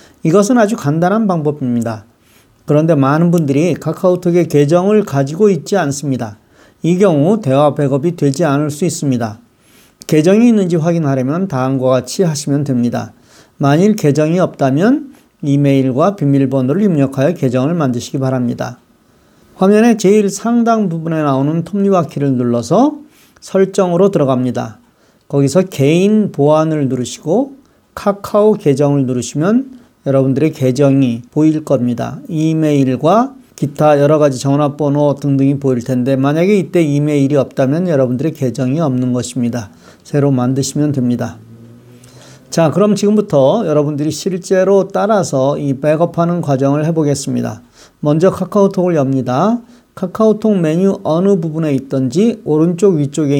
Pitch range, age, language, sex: 135-185 Hz, 40-59, Korean, male